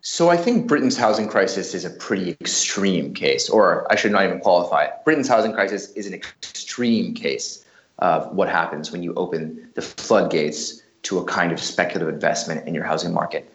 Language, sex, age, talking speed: English, male, 30-49, 190 wpm